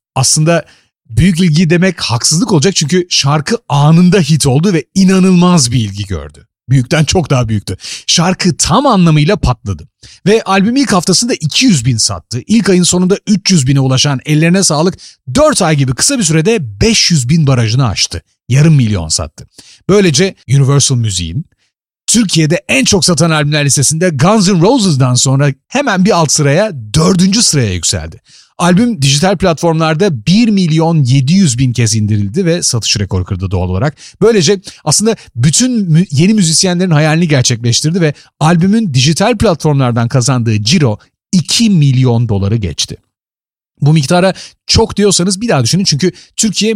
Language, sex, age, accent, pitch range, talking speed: Turkish, male, 40-59, native, 130-185 Hz, 145 wpm